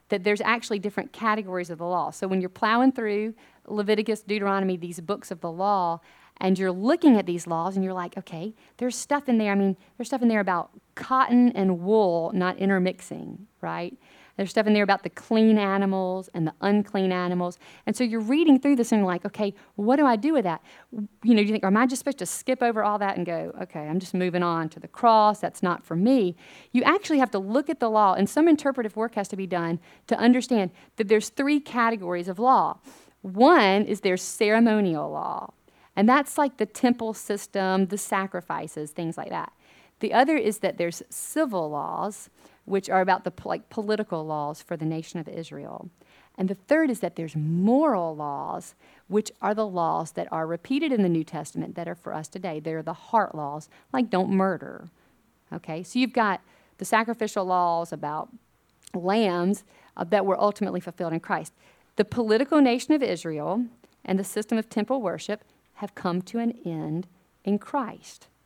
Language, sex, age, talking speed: English, female, 40-59, 200 wpm